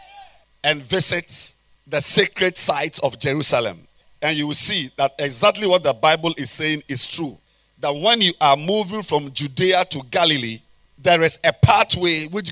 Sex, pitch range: male, 150-205 Hz